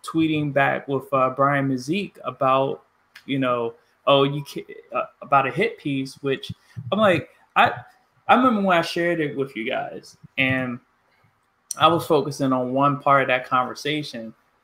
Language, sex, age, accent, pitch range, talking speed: English, male, 20-39, American, 130-160 Hz, 165 wpm